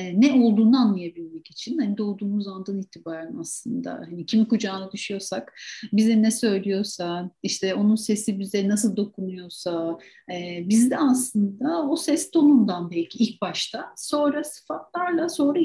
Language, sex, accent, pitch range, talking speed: Turkish, female, native, 180-255 Hz, 125 wpm